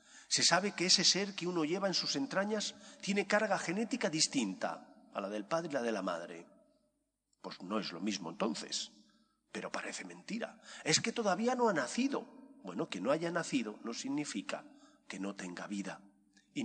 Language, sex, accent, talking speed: English, male, Spanish, 185 wpm